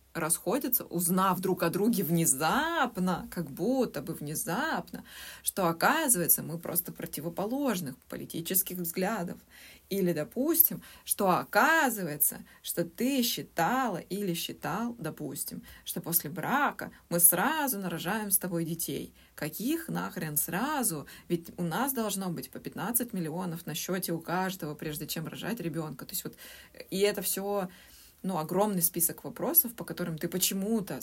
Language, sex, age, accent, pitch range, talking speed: Russian, female, 20-39, native, 160-195 Hz, 135 wpm